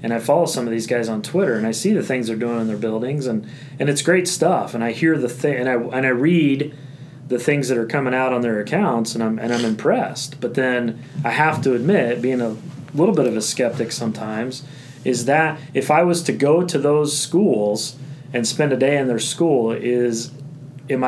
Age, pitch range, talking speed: 30-49, 115-145 Hz, 230 wpm